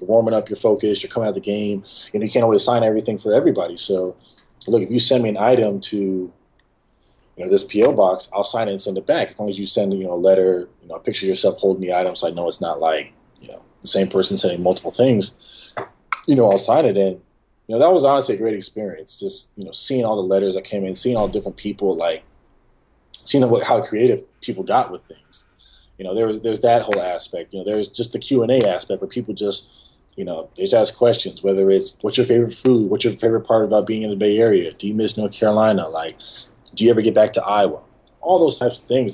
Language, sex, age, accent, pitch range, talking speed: English, male, 20-39, American, 95-110 Hz, 260 wpm